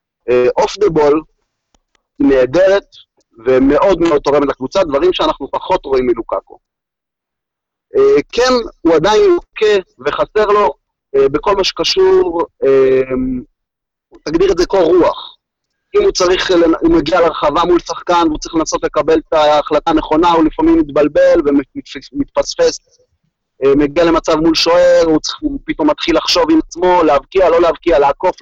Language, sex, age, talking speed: Hebrew, male, 30-49, 145 wpm